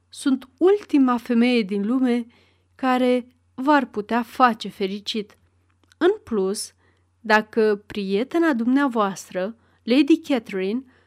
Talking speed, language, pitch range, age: 90 wpm, Romanian, 195-260 Hz, 30-49